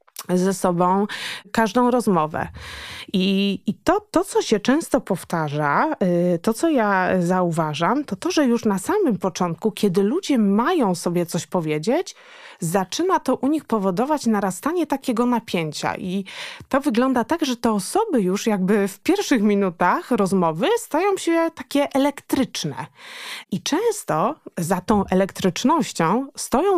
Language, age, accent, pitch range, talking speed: Polish, 20-39, native, 180-265 Hz, 135 wpm